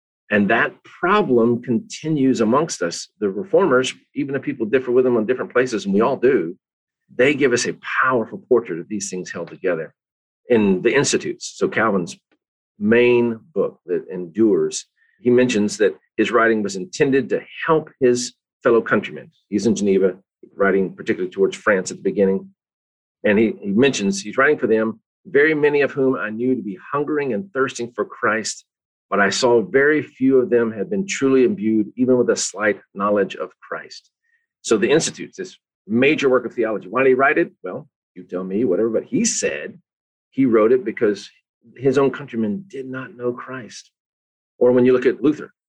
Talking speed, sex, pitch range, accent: 185 wpm, male, 105-150 Hz, American